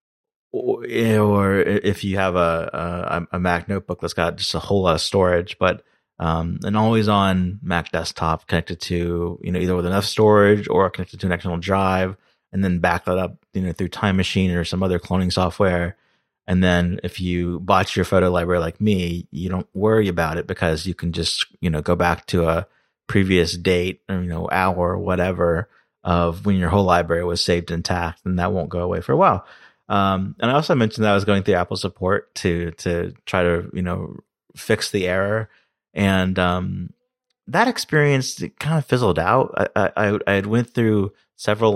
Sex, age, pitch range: male, 30-49, 85-100 Hz